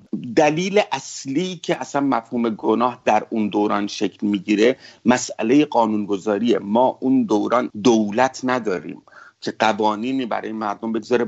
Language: English